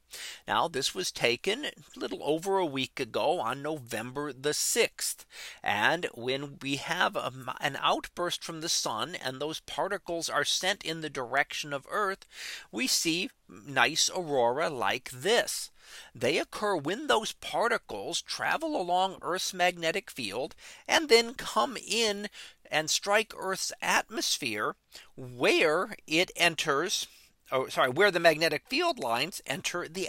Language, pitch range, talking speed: English, 155-200 Hz, 140 wpm